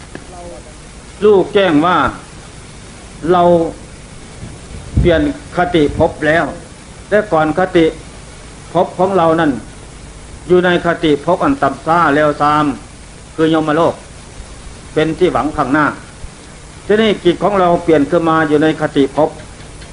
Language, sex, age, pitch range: Thai, male, 60-79, 150-180 Hz